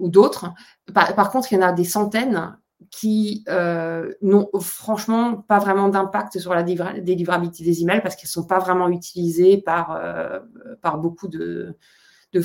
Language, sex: French, female